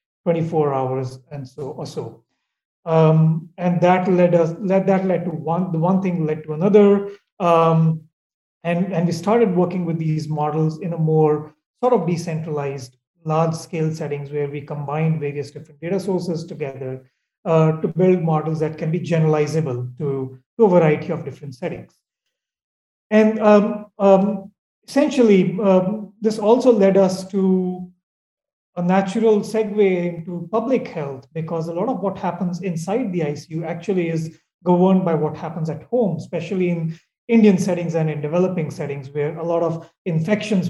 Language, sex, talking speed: English, male, 160 wpm